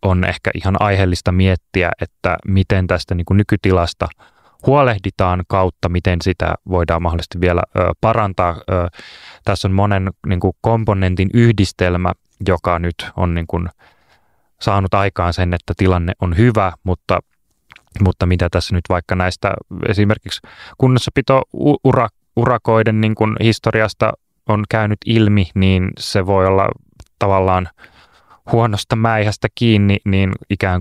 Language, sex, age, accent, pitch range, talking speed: Finnish, male, 20-39, native, 90-105 Hz, 105 wpm